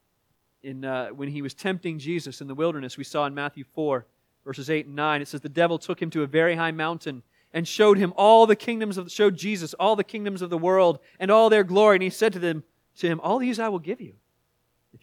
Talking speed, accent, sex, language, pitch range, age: 255 wpm, American, male, English, 130-195 Hz, 30-49